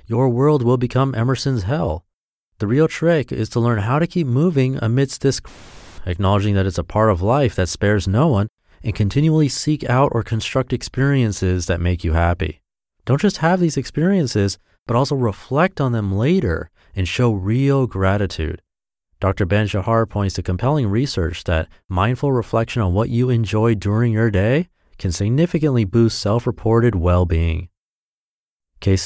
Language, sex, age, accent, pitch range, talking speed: English, male, 30-49, American, 90-120 Hz, 165 wpm